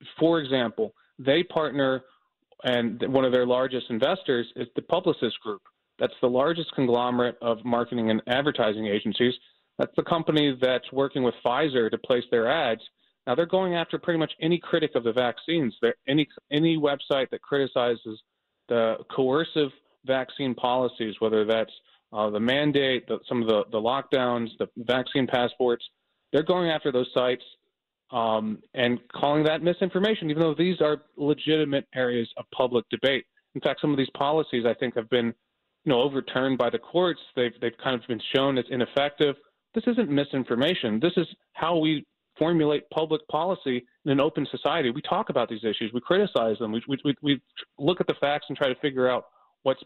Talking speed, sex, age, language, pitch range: 175 wpm, male, 30-49, English, 120-155 Hz